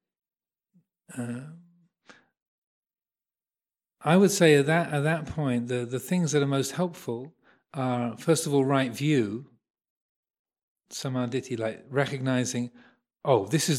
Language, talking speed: English, 120 wpm